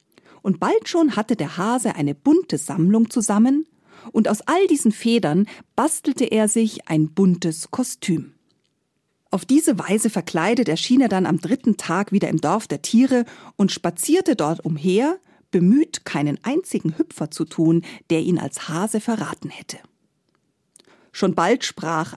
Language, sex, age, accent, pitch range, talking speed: German, female, 40-59, German, 165-250 Hz, 150 wpm